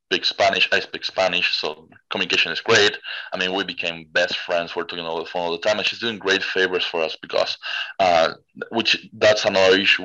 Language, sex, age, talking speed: English, male, 20-39, 210 wpm